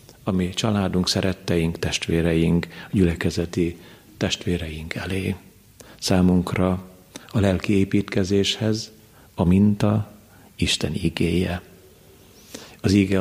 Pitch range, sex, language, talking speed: 85-105 Hz, male, Hungarian, 75 wpm